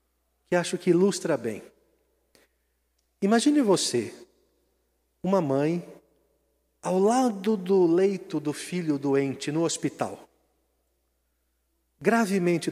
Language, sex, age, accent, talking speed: Portuguese, male, 50-69, Brazilian, 90 wpm